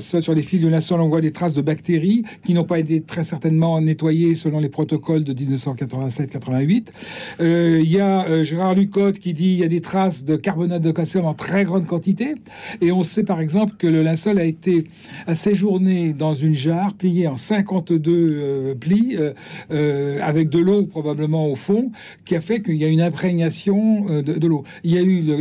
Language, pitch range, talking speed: French, 155-200 Hz, 210 wpm